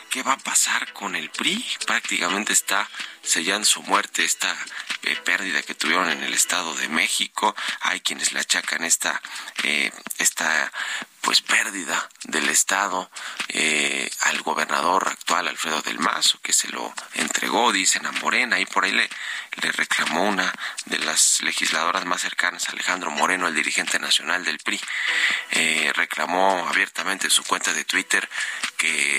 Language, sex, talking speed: Spanish, male, 155 wpm